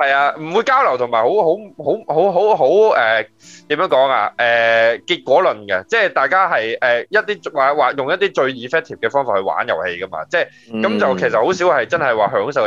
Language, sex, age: Chinese, male, 20-39